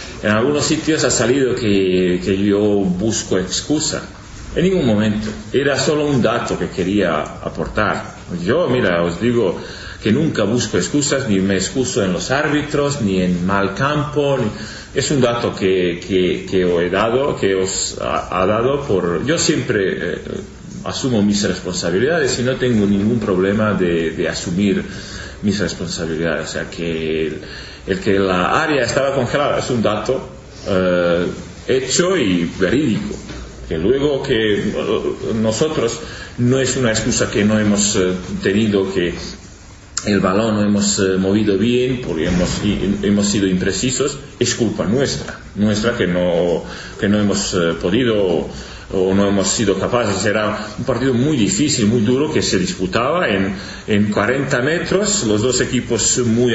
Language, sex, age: Spanish, male, 40-59